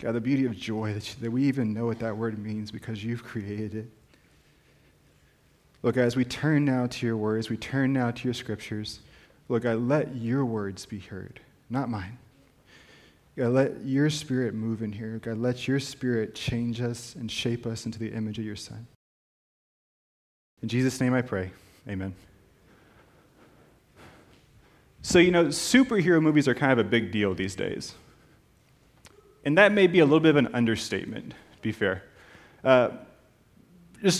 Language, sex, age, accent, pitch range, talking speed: English, male, 30-49, American, 110-140 Hz, 170 wpm